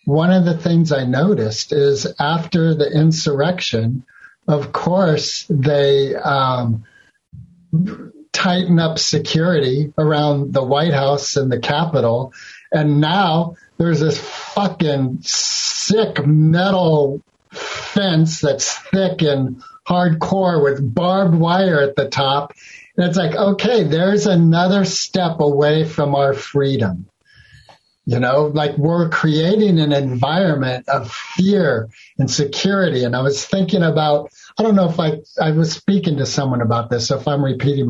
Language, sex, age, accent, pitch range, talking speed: English, male, 50-69, American, 140-170 Hz, 135 wpm